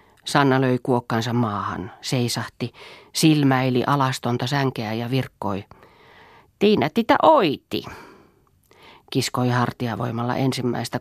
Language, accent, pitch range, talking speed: Finnish, native, 120-165 Hz, 95 wpm